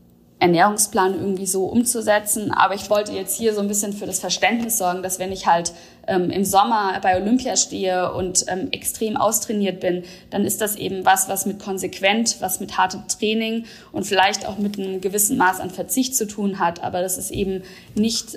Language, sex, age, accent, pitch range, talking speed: German, female, 20-39, German, 185-205 Hz, 195 wpm